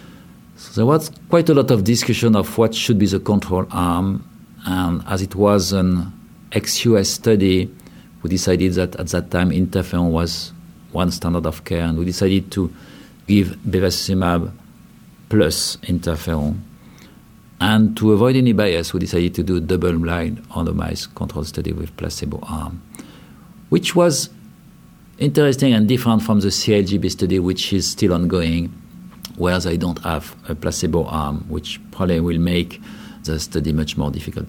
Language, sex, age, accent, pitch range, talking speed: English, male, 50-69, French, 85-105 Hz, 150 wpm